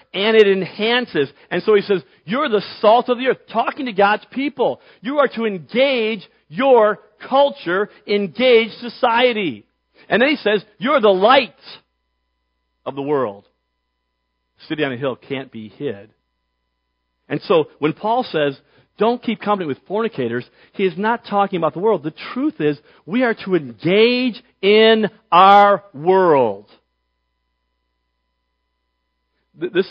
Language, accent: English, American